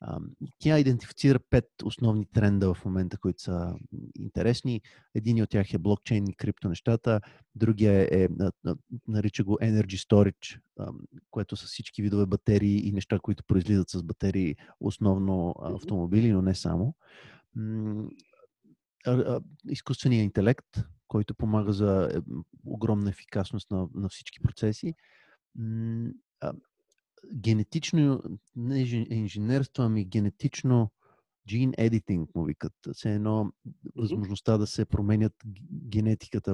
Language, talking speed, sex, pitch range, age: Bulgarian, 110 wpm, male, 100-120 Hz, 30-49